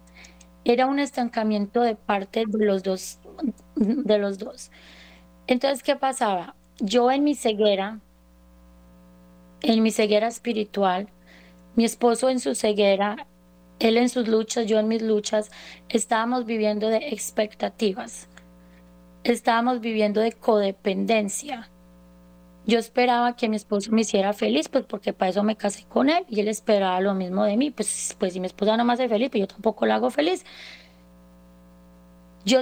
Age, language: 20-39, Spanish